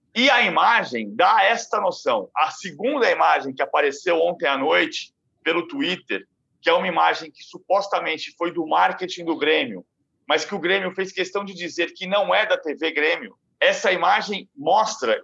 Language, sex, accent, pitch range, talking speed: Portuguese, male, Brazilian, 190-255 Hz, 175 wpm